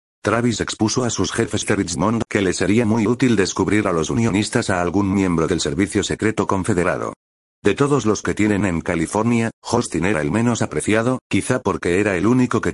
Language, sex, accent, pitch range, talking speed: Spanish, male, Spanish, 90-115 Hz, 195 wpm